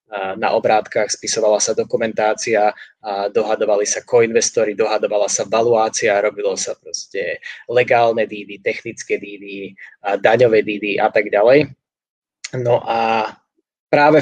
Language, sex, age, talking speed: Slovak, male, 20-39, 115 wpm